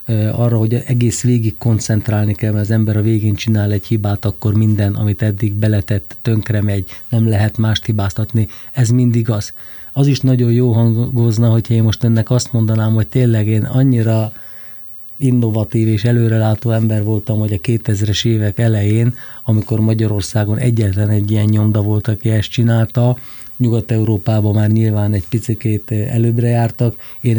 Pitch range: 110-125 Hz